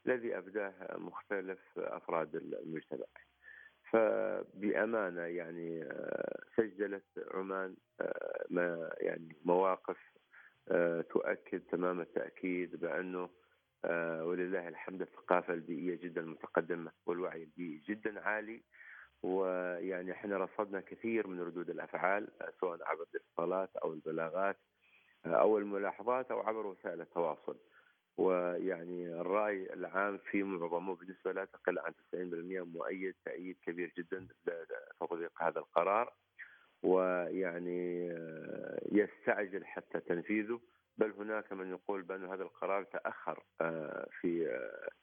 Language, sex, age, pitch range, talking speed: Arabic, male, 40-59, 90-110 Hz, 100 wpm